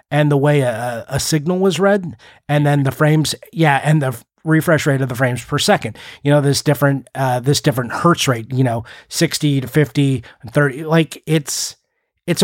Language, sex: English, male